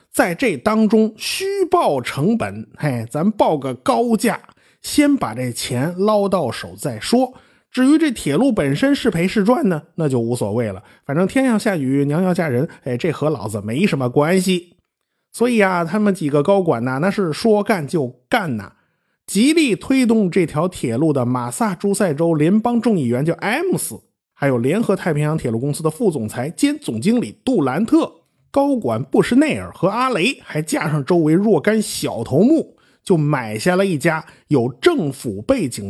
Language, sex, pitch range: Chinese, male, 145-220 Hz